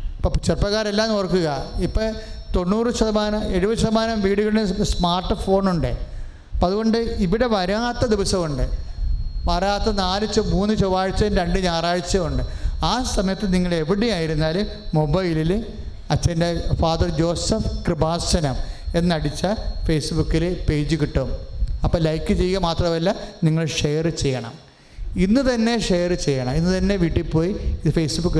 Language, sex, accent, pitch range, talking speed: English, male, Indian, 140-200 Hz, 140 wpm